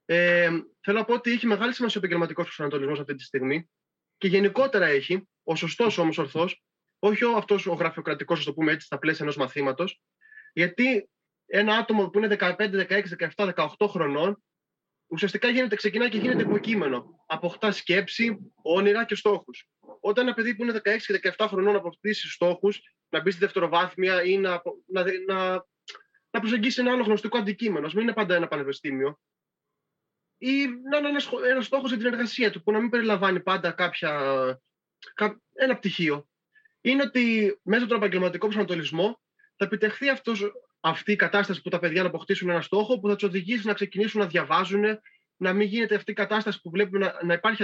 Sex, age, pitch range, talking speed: male, 20-39, 175-225 Hz, 175 wpm